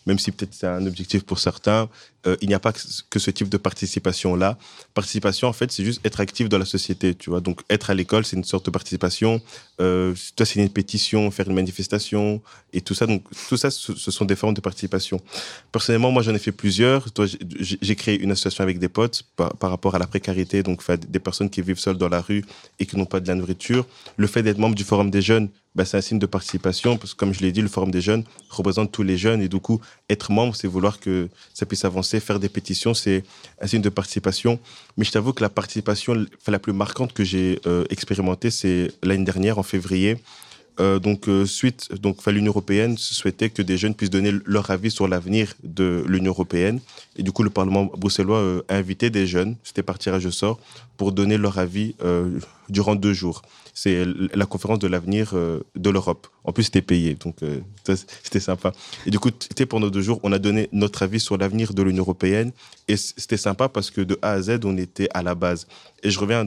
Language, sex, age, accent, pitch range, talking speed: French, male, 20-39, French, 95-110 Hz, 225 wpm